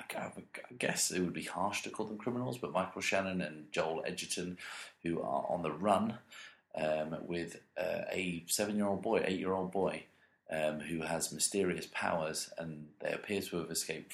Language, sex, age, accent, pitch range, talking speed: English, male, 30-49, British, 75-90 Hz, 170 wpm